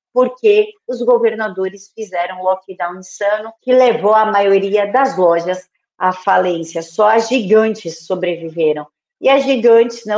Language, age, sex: Portuguese, 40-59, female